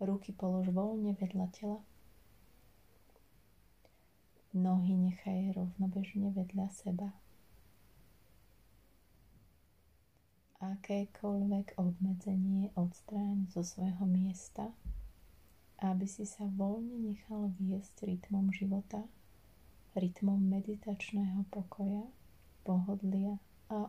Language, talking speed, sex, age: Slovak, 75 wpm, female, 30-49